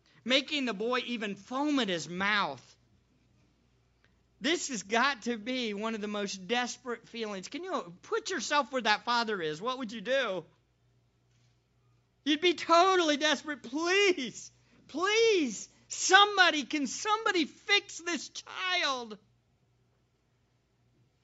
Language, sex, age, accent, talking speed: English, male, 50-69, American, 120 wpm